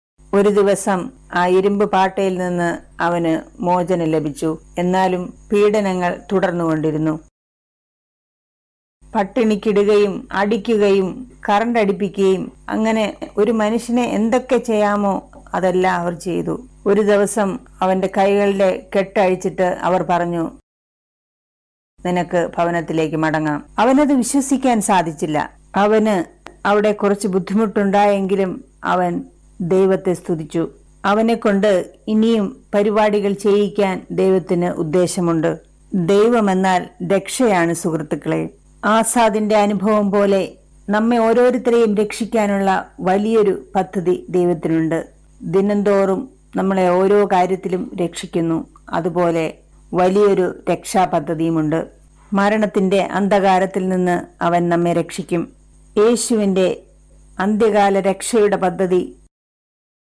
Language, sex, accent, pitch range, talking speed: Malayalam, female, native, 175-210 Hz, 80 wpm